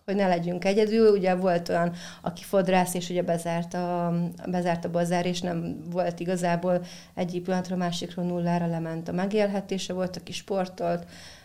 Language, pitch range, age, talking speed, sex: Hungarian, 175-200 Hz, 30-49, 160 wpm, female